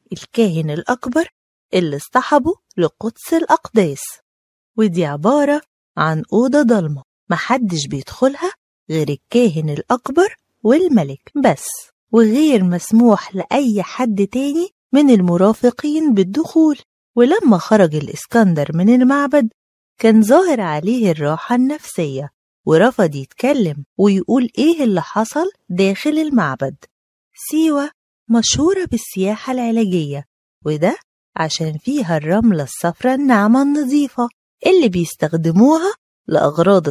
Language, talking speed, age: Arabic, 95 wpm, 30-49